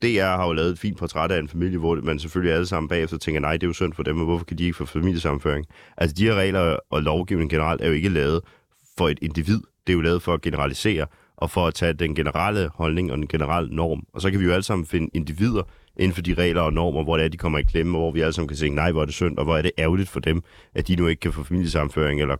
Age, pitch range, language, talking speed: 30-49, 80-95 Hz, Danish, 305 wpm